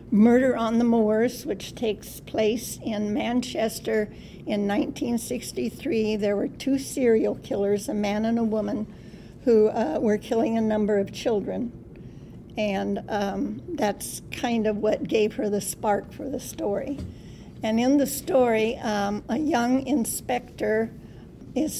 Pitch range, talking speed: 210-240 Hz, 140 wpm